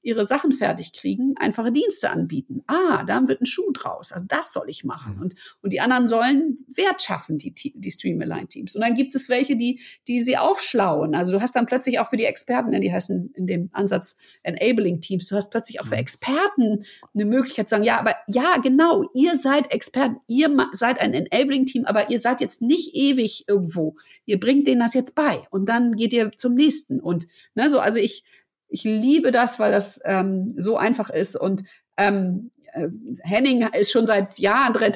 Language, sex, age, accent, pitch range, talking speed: German, female, 50-69, German, 200-255 Hz, 195 wpm